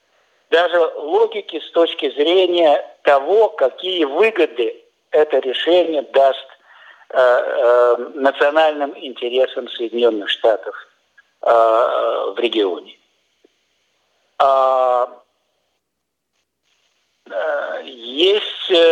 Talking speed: 65 wpm